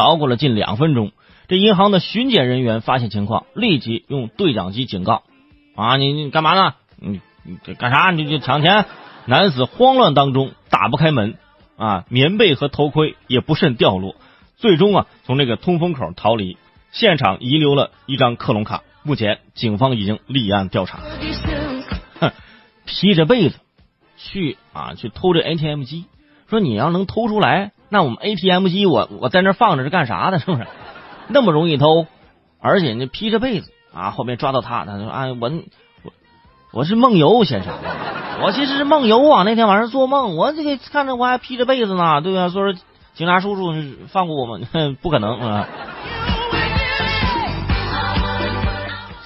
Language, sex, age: Chinese, male, 30-49